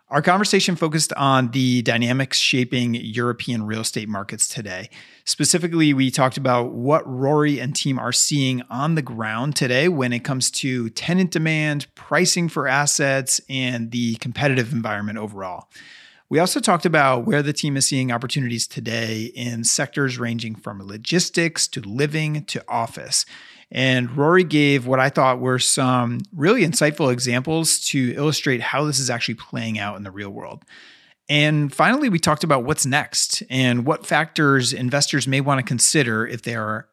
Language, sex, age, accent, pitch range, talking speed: English, male, 30-49, American, 120-150 Hz, 165 wpm